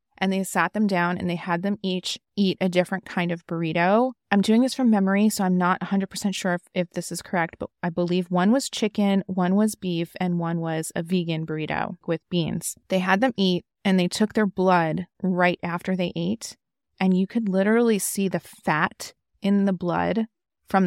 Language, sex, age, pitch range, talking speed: English, female, 20-39, 175-205 Hz, 205 wpm